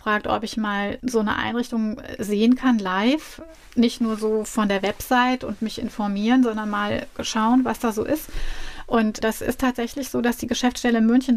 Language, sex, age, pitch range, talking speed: German, female, 30-49, 210-245 Hz, 190 wpm